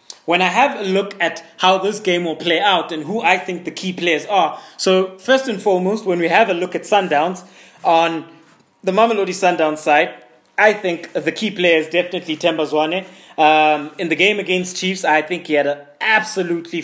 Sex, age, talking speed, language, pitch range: male, 20-39, 205 wpm, English, 160-190 Hz